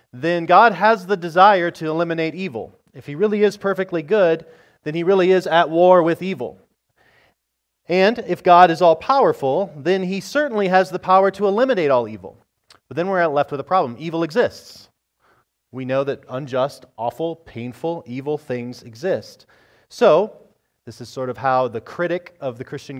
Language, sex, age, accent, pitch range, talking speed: English, male, 30-49, American, 130-180 Hz, 170 wpm